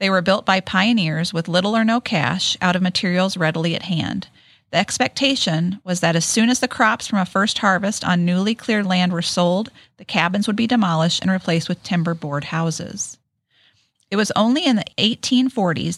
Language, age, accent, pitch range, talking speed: English, 40-59, American, 175-215 Hz, 195 wpm